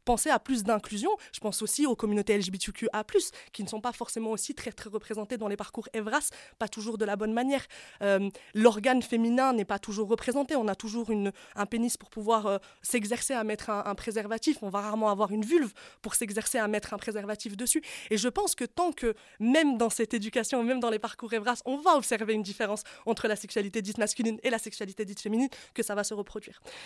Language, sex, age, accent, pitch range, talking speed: French, female, 20-39, French, 210-255 Hz, 220 wpm